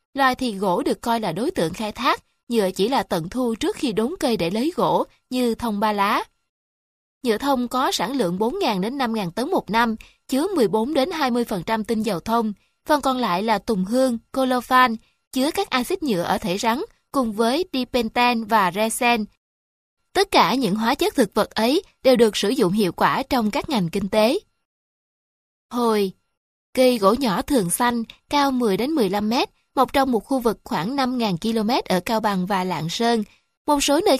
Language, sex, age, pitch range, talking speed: Vietnamese, female, 20-39, 215-265 Hz, 195 wpm